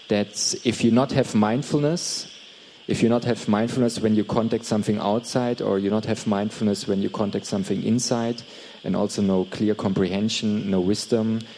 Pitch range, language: 95-115 Hz, Thai